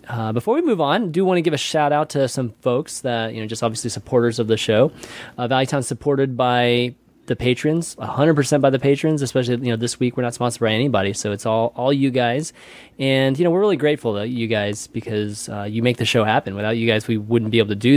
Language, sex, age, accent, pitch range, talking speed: English, male, 30-49, American, 115-145 Hz, 255 wpm